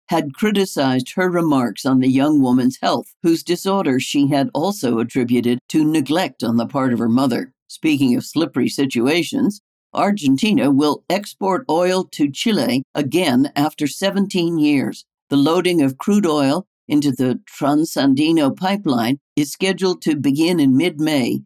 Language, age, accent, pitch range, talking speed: English, 60-79, American, 135-205 Hz, 145 wpm